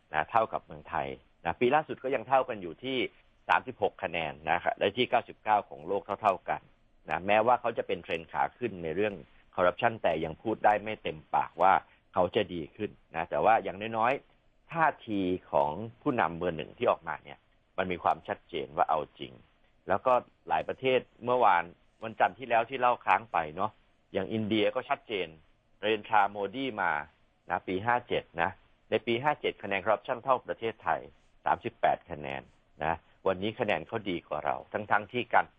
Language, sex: Thai, male